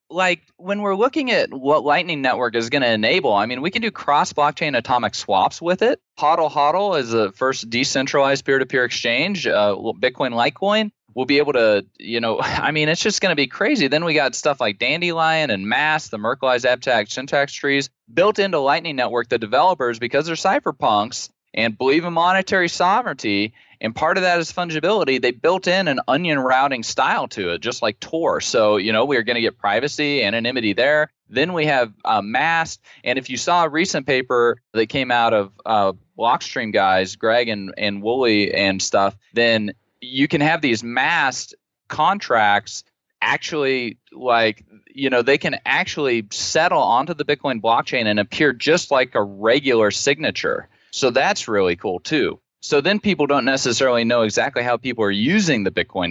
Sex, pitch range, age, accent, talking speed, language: male, 110-150 Hz, 20-39, American, 185 wpm, English